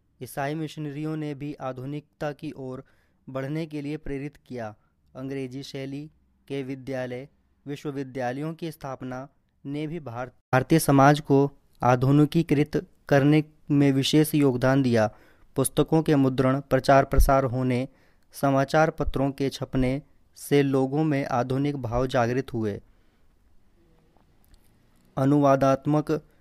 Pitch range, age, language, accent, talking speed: 125-145 Hz, 20-39, Hindi, native, 110 wpm